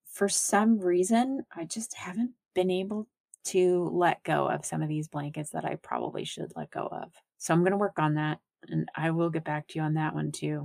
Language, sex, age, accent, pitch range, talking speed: English, female, 30-49, American, 155-190 Hz, 230 wpm